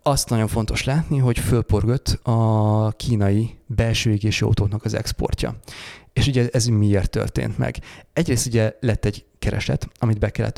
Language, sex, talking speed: Hungarian, male, 155 wpm